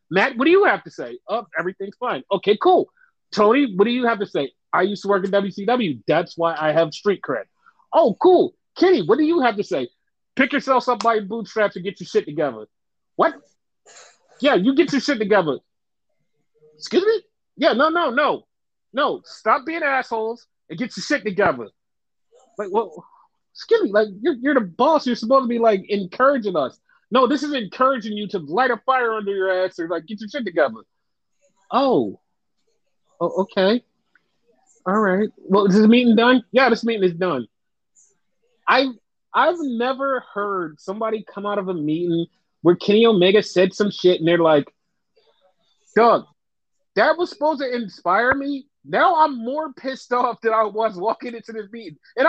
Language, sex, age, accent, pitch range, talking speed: English, male, 30-49, American, 200-280 Hz, 180 wpm